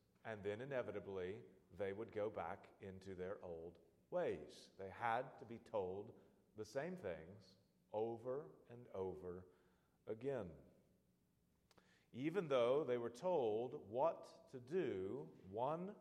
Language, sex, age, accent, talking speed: English, male, 40-59, American, 120 wpm